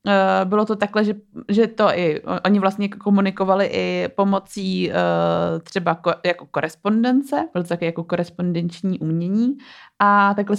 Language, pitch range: Czech, 185-205 Hz